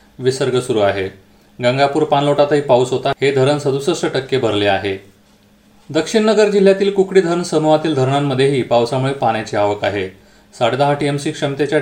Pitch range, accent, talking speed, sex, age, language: 115-155 Hz, native, 140 wpm, male, 30-49, Marathi